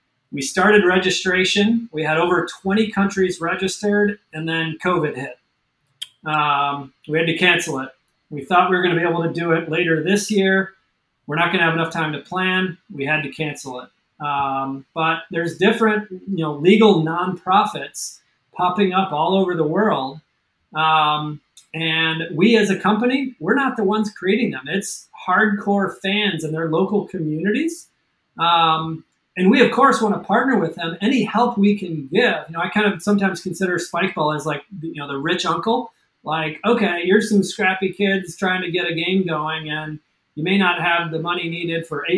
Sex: male